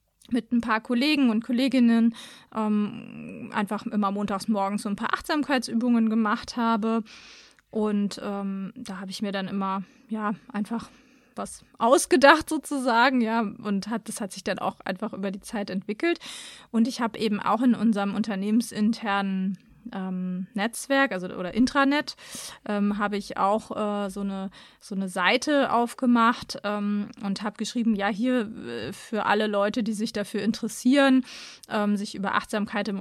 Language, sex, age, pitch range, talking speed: German, female, 30-49, 205-255 Hz, 155 wpm